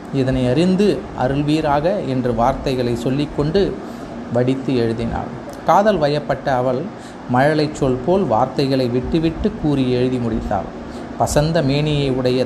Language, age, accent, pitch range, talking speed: Tamil, 30-49, native, 125-170 Hz, 110 wpm